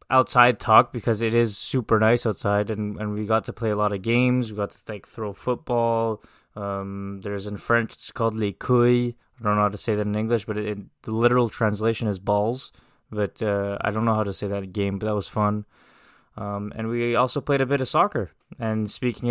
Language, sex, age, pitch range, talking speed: English, male, 20-39, 110-125 Hz, 230 wpm